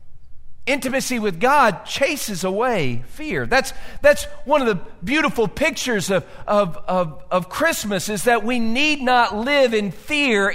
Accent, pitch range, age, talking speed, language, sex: American, 205-280 Hz, 50-69, 150 wpm, English, male